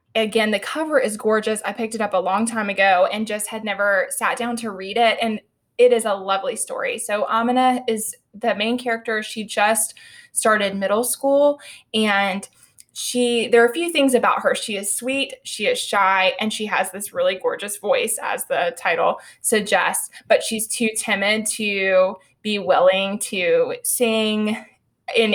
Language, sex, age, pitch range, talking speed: English, female, 20-39, 200-240 Hz, 180 wpm